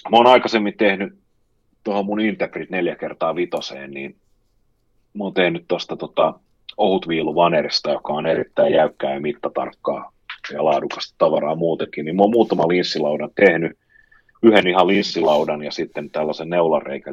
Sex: male